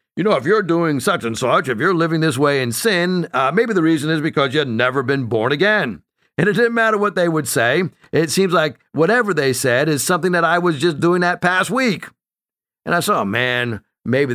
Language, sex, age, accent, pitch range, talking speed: English, male, 50-69, American, 125-180 Hz, 240 wpm